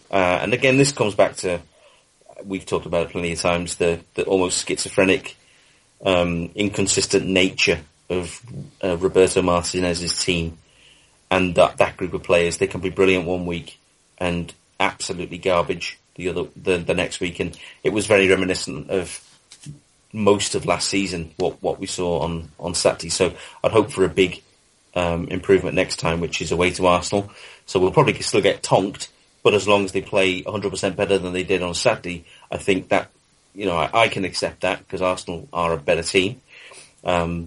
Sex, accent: male, British